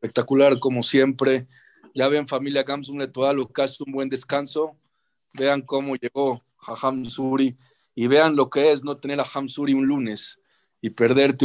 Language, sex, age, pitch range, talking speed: English, male, 40-59, 125-140 Hz, 160 wpm